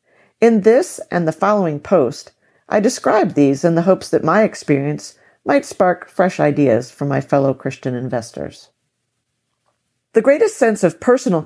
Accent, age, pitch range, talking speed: American, 50-69, 150-205 Hz, 150 wpm